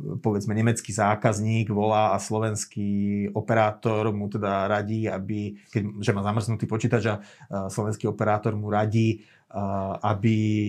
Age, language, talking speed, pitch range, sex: 30-49, Slovak, 110 wpm, 110-130 Hz, male